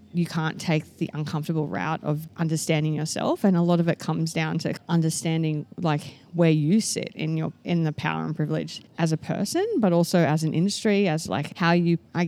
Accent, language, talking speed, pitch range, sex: Australian, English, 205 wpm, 155-180 Hz, female